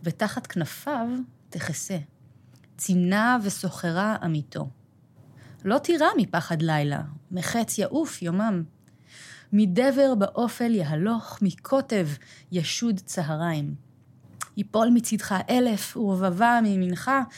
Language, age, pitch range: English, 30-49, 150-220 Hz